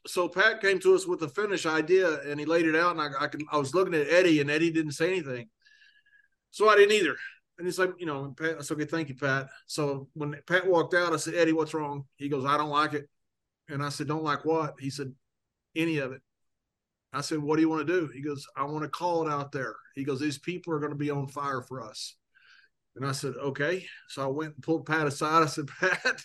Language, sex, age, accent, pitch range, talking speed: English, male, 30-49, American, 140-170 Hz, 260 wpm